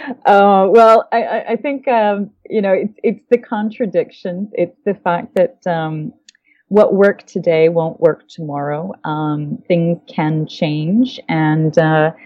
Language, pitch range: English, 155-205 Hz